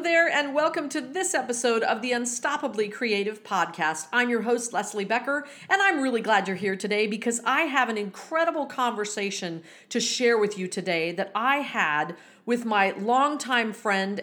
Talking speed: 175 wpm